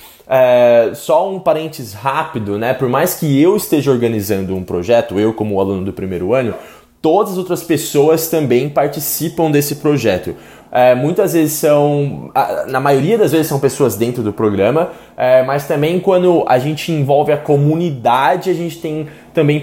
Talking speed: 155 wpm